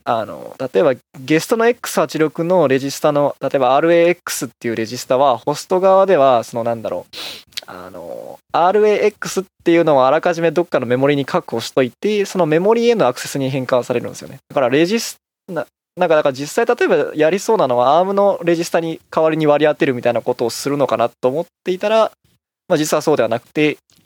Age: 20-39